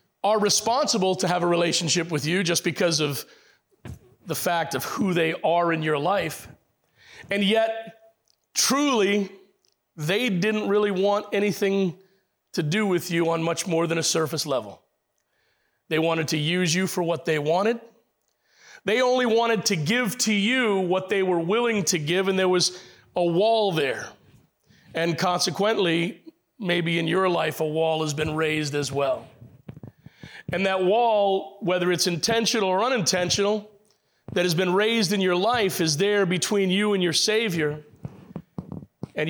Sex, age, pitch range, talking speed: male, 40-59, 165-205 Hz, 155 wpm